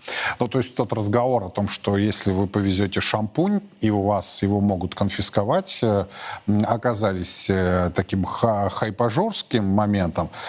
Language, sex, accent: Russian, male, native